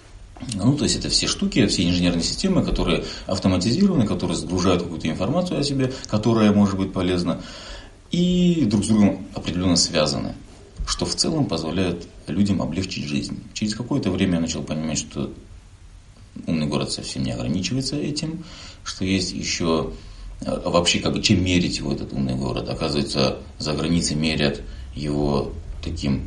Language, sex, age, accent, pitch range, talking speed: Russian, male, 30-49, native, 75-95 Hz, 150 wpm